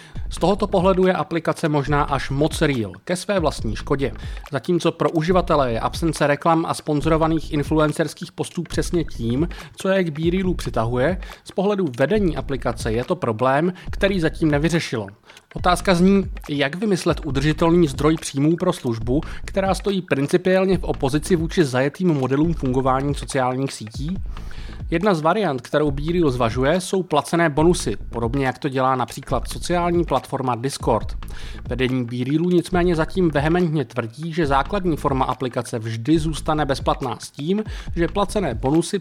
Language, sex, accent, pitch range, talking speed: Czech, male, native, 135-175 Hz, 145 wpm